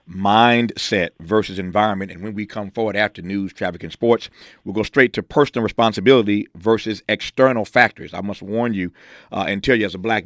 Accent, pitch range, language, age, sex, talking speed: American, 95-115 Hz, English, 50-69, male, 195 wpm